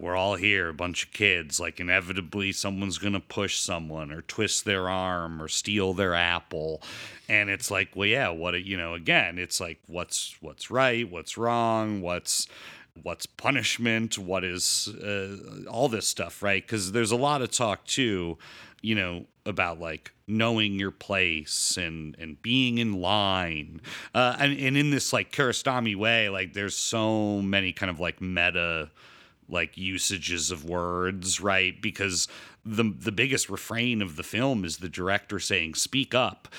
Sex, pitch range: male, 90-110 Hz